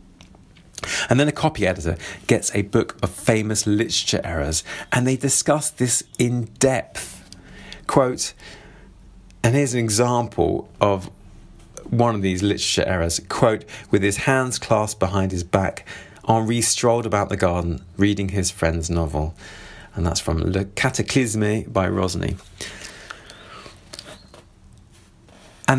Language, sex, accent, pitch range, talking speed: English, male, British, 95-120 Hz, 125 wpm